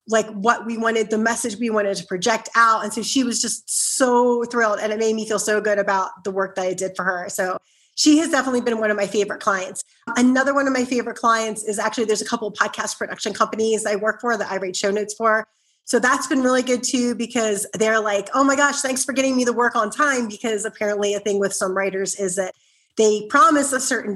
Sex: female